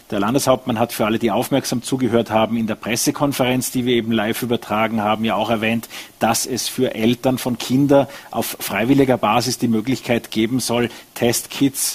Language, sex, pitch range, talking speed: German, male, 110-135 Hz, 175 wpm